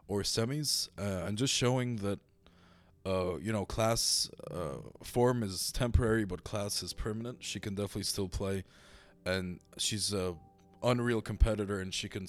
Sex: male